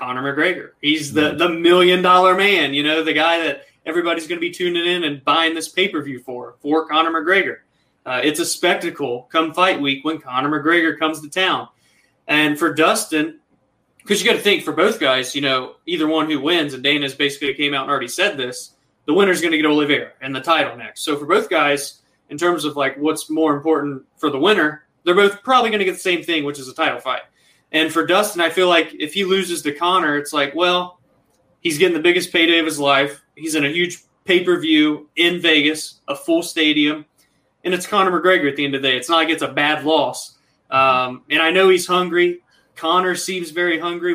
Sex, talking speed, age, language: male, 225 wpm, 20-39, English